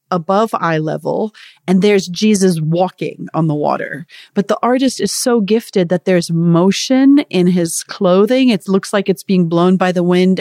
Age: 30-49